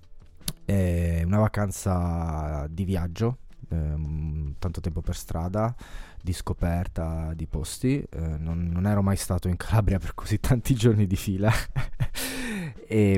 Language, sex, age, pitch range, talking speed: Italian, male, 20-39, 85-100 Hz, 130 wpm